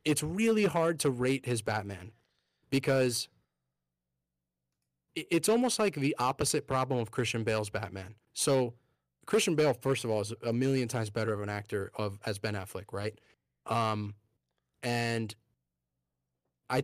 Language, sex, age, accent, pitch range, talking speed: English, male, 20-39, American, 110-135 Hz, 145 wpm